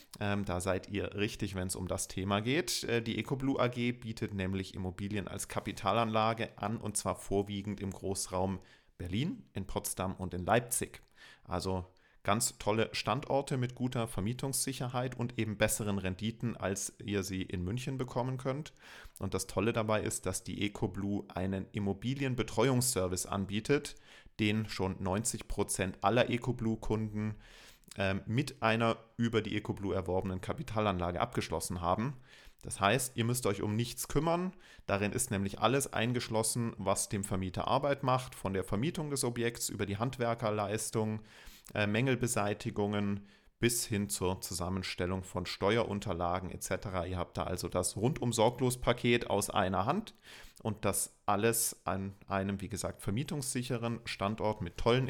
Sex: male